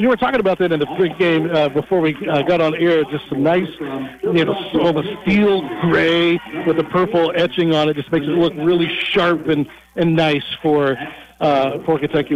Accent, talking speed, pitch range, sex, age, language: American, 220 wpm, 150-180 Hz, male, 60-79, English